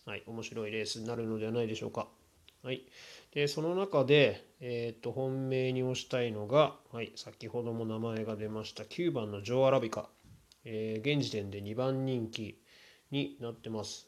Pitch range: 110-130 Hz